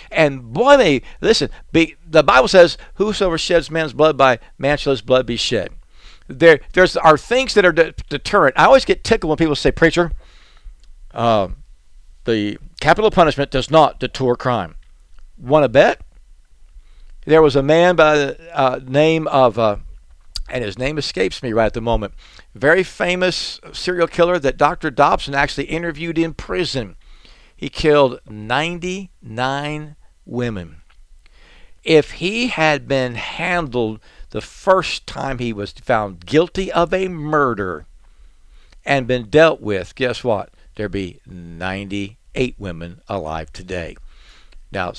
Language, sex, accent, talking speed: English, male, American, 145 wpm